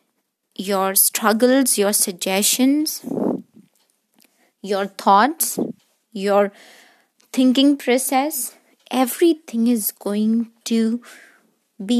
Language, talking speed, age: English, 70 wpm, 20-39